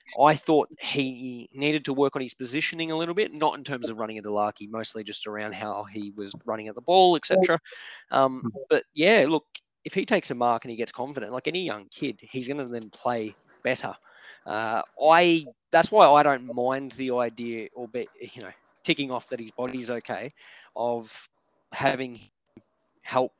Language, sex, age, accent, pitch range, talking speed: English, male, 20-39, Australian, 110-135 Hz, 200 wpm